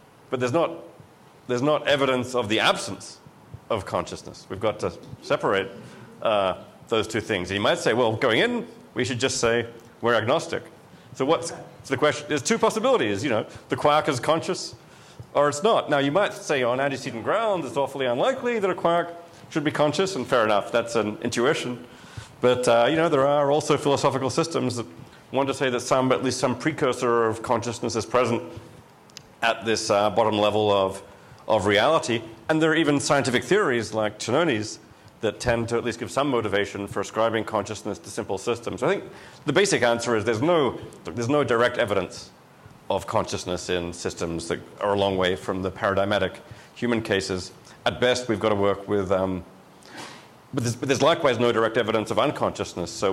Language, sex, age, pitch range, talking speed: English, male, 40-59, 110-145 Hz, 195 wpm